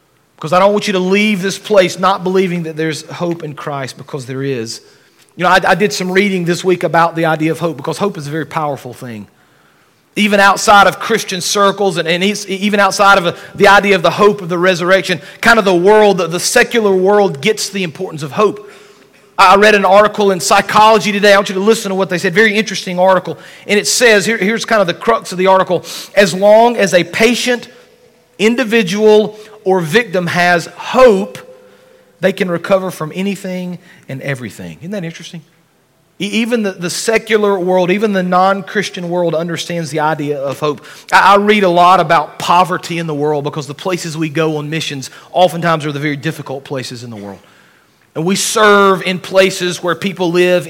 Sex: male